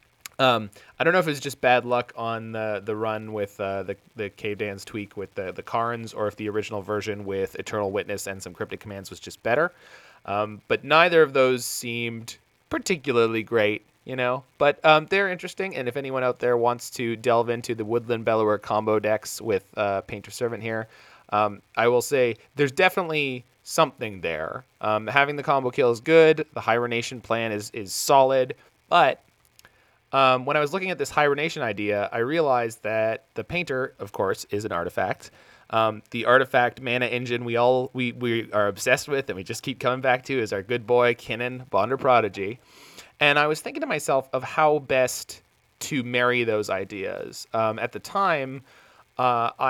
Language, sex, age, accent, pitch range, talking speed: English, male, 20-39, American, 110-130 Hz, 190 wpm